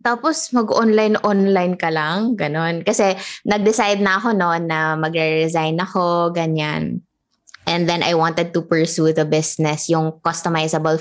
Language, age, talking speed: English, 20-39, 140 wpm